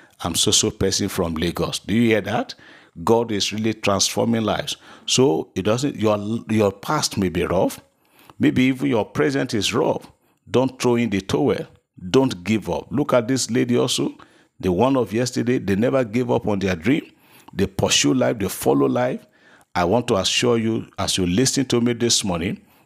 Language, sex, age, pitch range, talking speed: English, male, 50-69, 95-125 Hz, 190 wpm